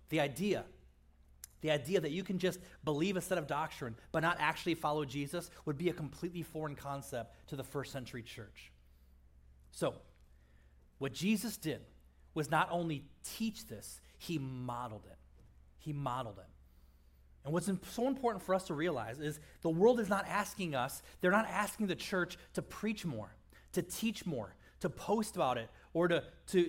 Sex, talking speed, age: male, 175 wpm, 30-49